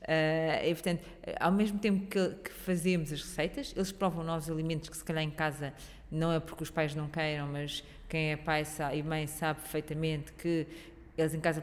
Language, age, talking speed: Portuguese, 20-39, 190 wpm